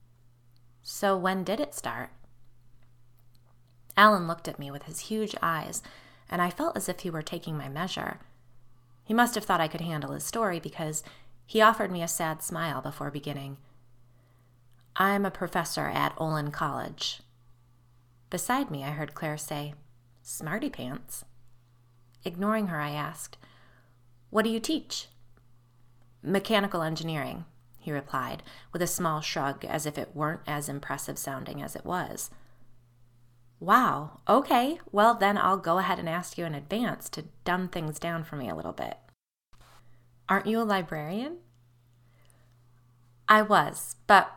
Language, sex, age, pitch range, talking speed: English, female, 20-39, 120-180 Hz, 145 wpm